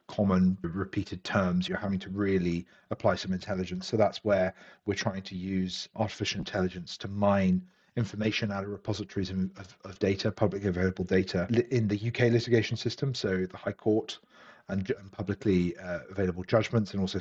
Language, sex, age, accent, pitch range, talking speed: English, male, 40-59, British, 95-120 Hz, 165 wpm